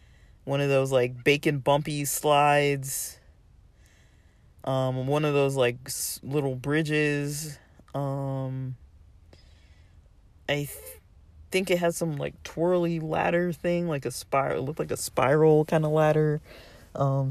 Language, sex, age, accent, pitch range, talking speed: English, male, 20-39, American, 130-150 Hz, 125 wpm